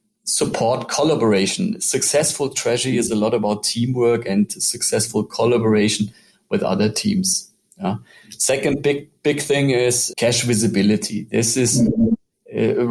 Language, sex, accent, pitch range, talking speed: English, male, German, 110-130 Hz, 115 wpm